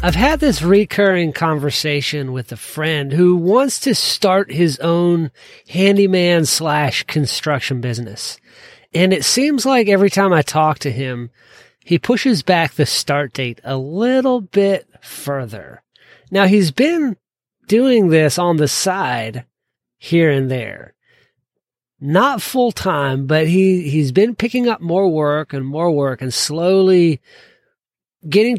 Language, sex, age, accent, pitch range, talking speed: English, male, 40-59, American, 145-195 Hz, 135 wpm